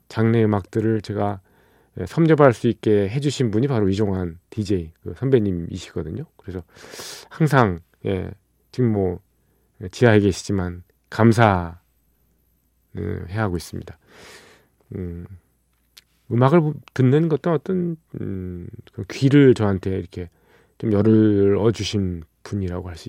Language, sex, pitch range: Korean, male, 95-130 Hz